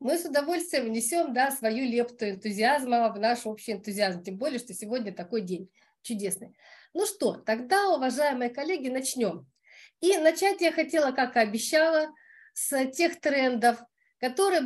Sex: female